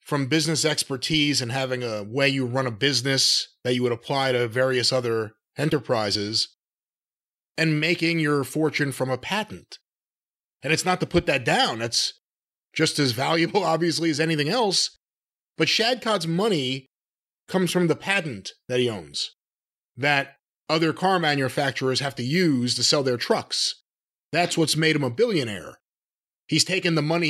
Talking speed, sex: 160 wpm, male